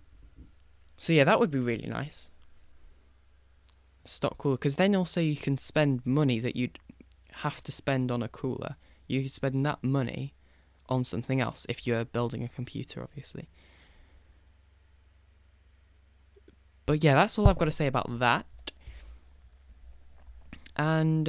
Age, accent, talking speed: 10-29, British, 140 wpm